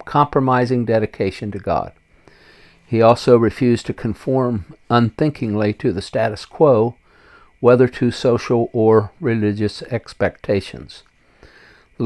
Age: 60-79